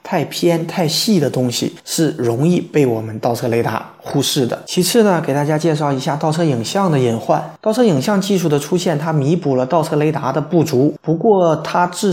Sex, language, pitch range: male, Chinese, 135-185 Hz